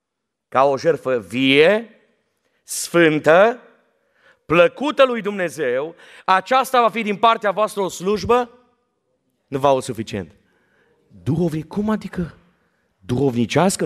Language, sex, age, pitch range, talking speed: Romanian, male, 30-49, 130-215 Hz, 100 wpm